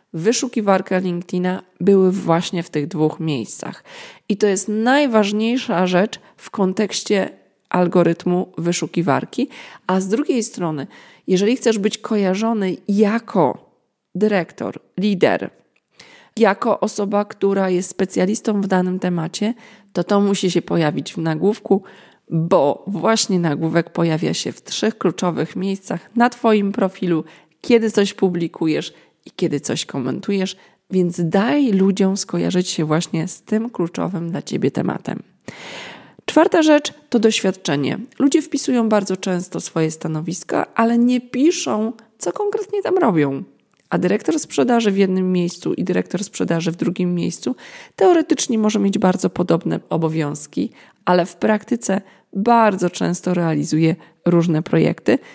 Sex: female